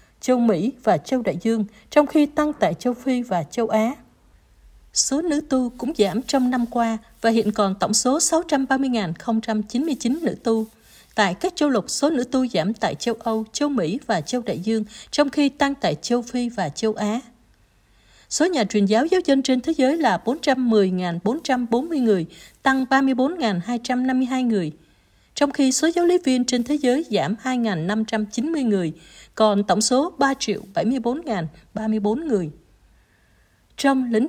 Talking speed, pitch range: 160 wpm, 220-270 Hz